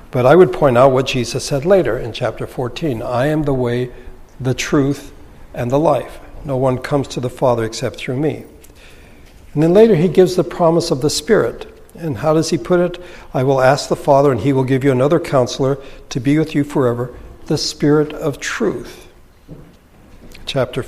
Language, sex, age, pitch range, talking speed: English, male, 60-79, 125-160 Hz, 195 wpm